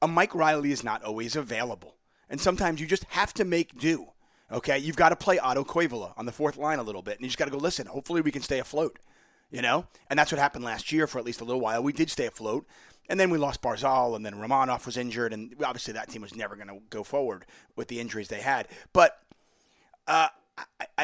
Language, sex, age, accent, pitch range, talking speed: English, male, 30-49, American, 115-155 Hz, 245 wpm